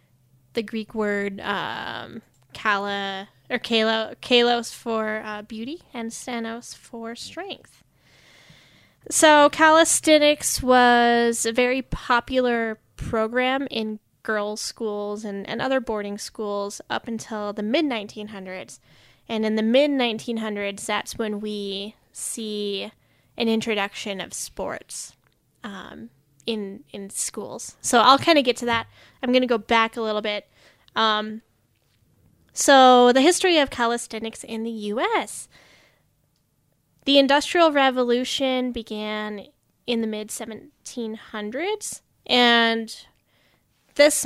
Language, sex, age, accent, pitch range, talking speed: English, female, 10-29, American, 210-255 Hz, 110 wpm